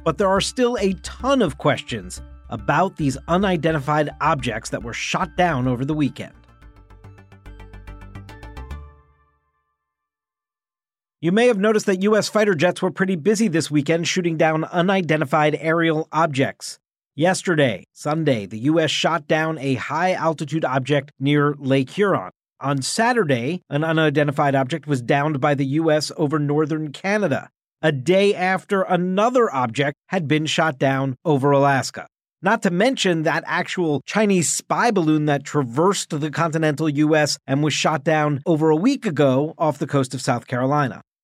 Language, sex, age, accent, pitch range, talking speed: English, male, 40-59, American, 140-180 Hz, 145 wpm